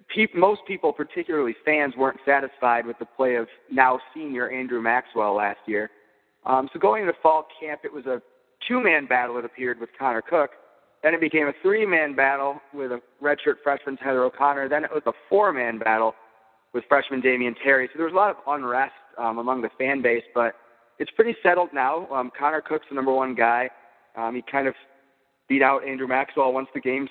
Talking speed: 195 wpm